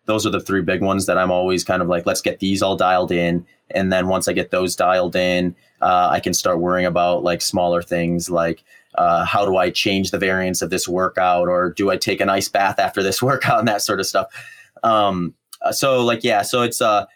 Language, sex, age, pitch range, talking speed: English, male, 30-49, 90-105 Hz, 240 wpm